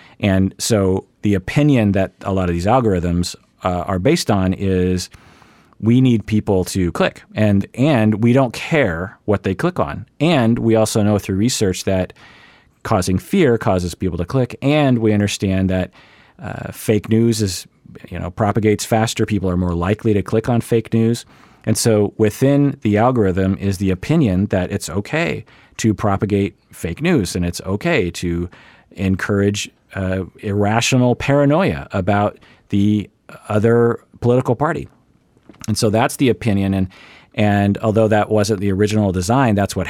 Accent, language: American, English